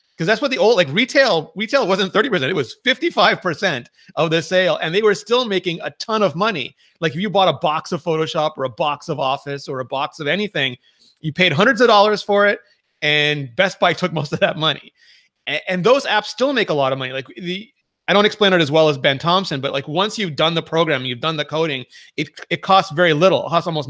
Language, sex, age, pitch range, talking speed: English, male, 30-49, 145-195 Hz, 245 wpm